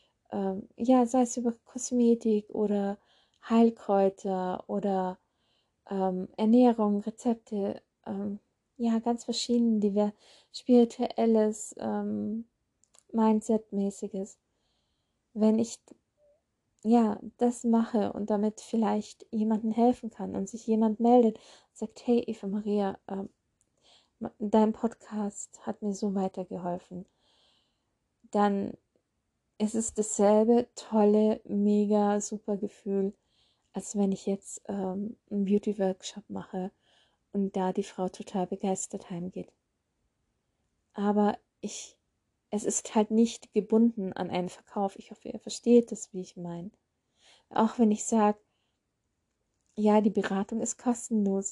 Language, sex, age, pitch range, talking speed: German, female, 20-39, 200-230 Hz, 110 wpm